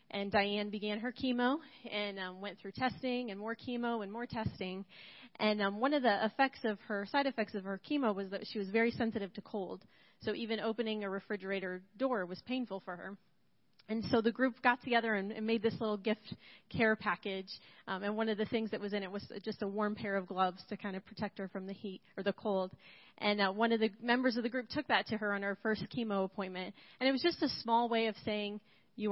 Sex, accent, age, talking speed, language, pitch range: female, American, 30-49, 240 wpm, English, 200-240 Hz